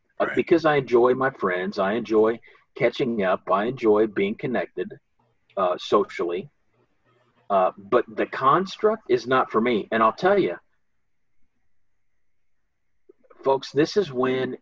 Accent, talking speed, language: American, 130 wpm, English